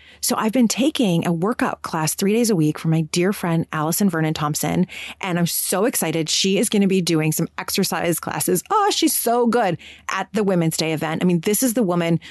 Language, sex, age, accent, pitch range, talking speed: English, female, 30-49, American, 165-220 Hz, 225 wpm